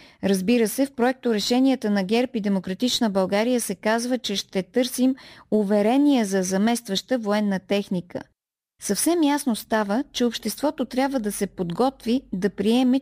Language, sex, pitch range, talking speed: Bulgarian, female, 205-255 Hz, 145 wpm